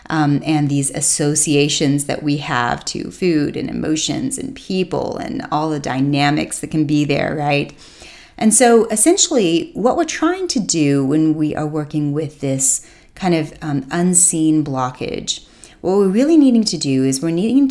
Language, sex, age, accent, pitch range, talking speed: English, female, 30-49, American, 140-175 Hz, 170 wpm